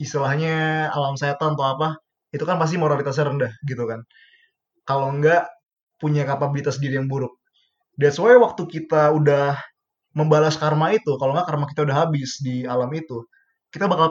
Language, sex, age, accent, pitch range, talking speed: Indonesian, male, 20-39, native, 145-180 Hz, 160 wpm